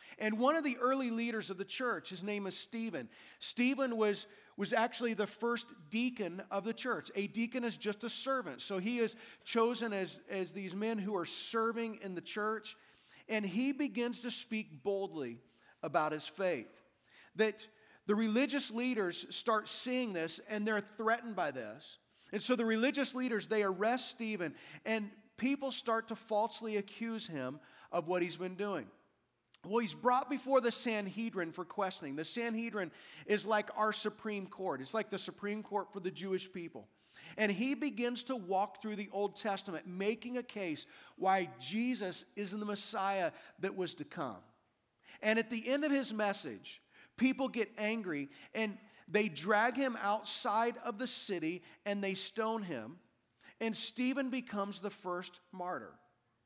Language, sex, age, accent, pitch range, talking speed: English, male, 40-59, American, 195-235 Hz, 165 wpm